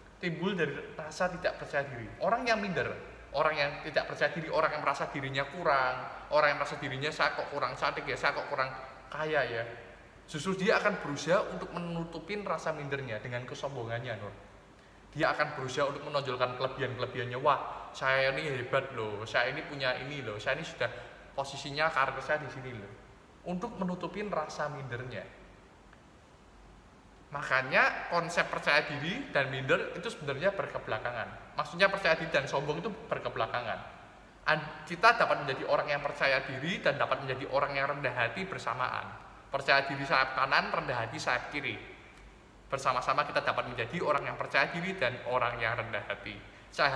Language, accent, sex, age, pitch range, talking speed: Indonesian, native, male, 20-39, 130-165 Hz, 160 wpm